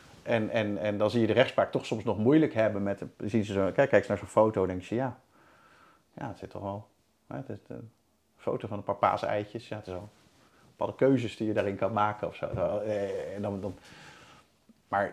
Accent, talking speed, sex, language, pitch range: Dutch, 220 wpm, male, Dutch, 100-120 Hz